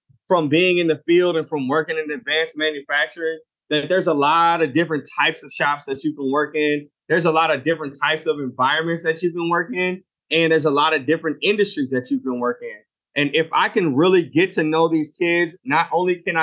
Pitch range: 150-175 Hz